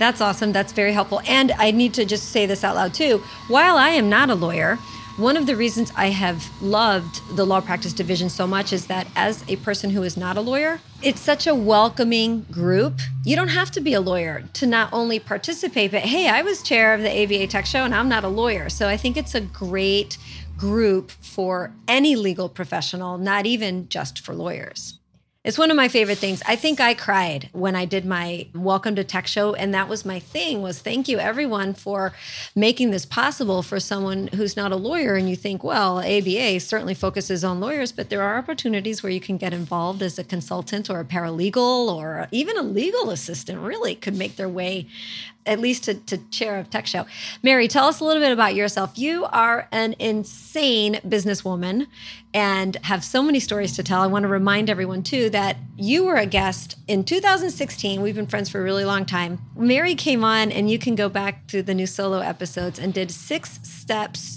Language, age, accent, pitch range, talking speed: English, 30-49, American, 185-230 Hz, 215 wpm